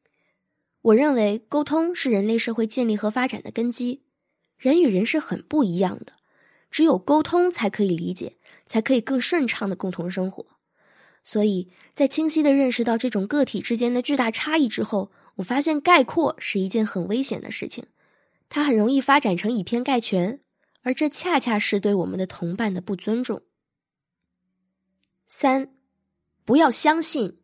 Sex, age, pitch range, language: female, 20-39, 210-280 Hz, Chinese